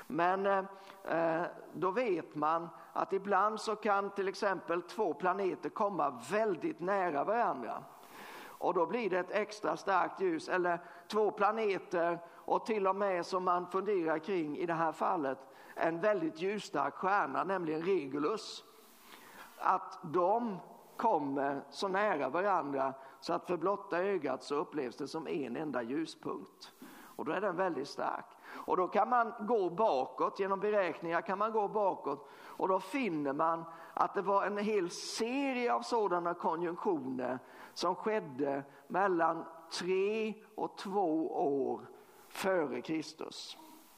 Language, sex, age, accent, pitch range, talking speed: Swedish, male, 50-69, native, 165-210 Hz, 140 wpm